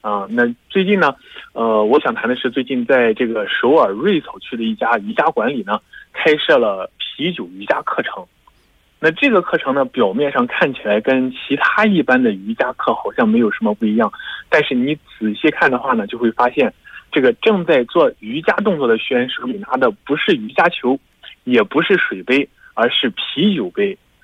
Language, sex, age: Korean, male, 20-39